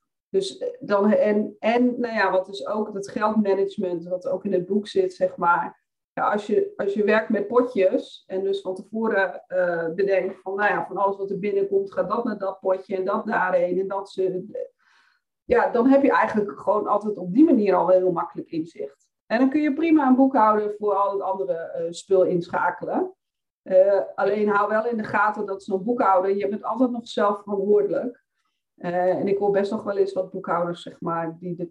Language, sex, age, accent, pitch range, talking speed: Dutch, female, 40-59, Dutch, 185-235 Hz, 210 wpm